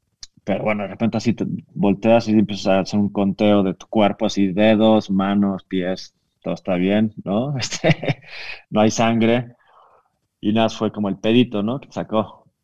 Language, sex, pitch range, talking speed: English, male, 100-120 Hz, 180 wpm